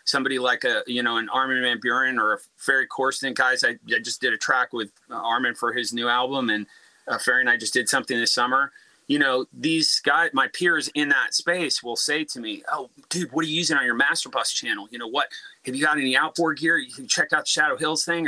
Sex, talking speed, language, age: male, 255 wpm, English, 30-49